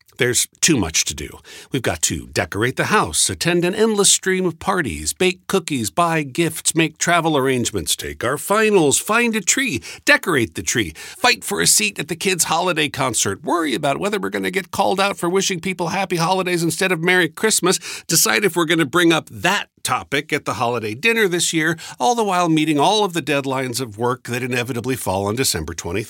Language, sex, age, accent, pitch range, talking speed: English, male, 50-69, American, 110-175 Hz, 205 wpm